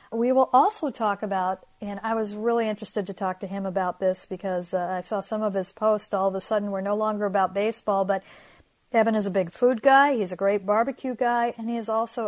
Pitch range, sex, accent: 195-230 Hz, female, American